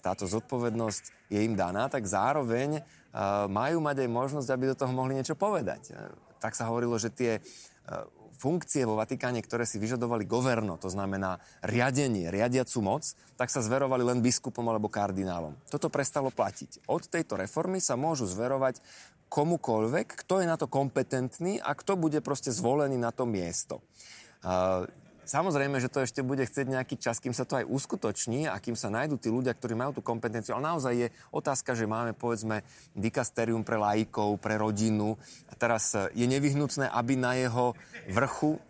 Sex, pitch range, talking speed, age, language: male, 110-135 Hz, 165 wpm, 30-49, Slovak